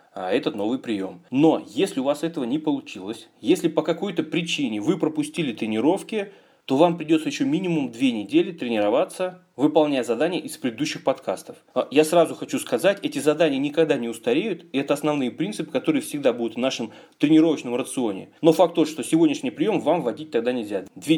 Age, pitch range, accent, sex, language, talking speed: 30-49, 150-255 Hz, native, male, Russian, 175 wpm